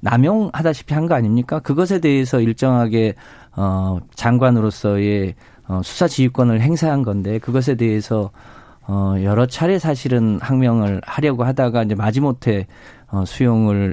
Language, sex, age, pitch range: Korean, male, 40-59, 105-140 Hz